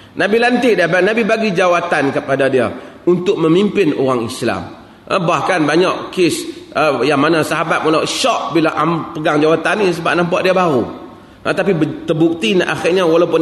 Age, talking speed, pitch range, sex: 30-49, 150 wpm, 140-215 Hz, male